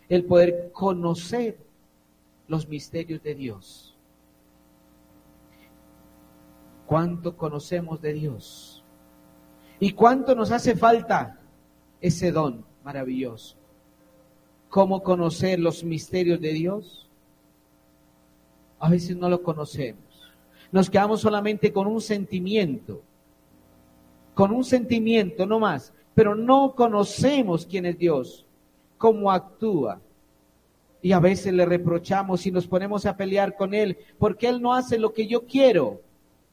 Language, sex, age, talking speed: Spanish, male, 50-69, 115 wpm